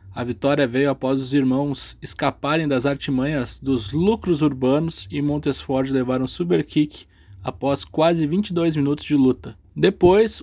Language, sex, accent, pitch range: Portuguese, male, Brazilian, 125-150 Hz